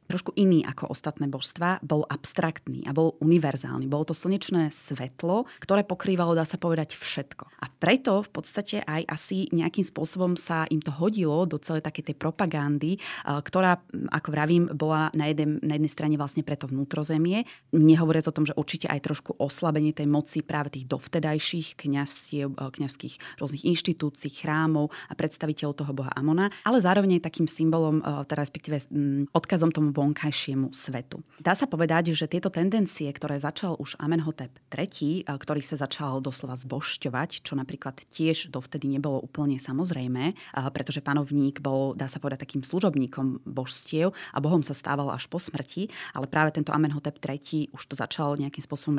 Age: 20-39